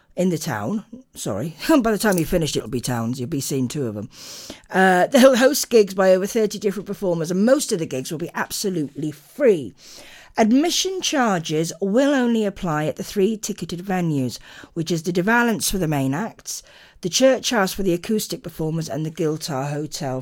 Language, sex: English, female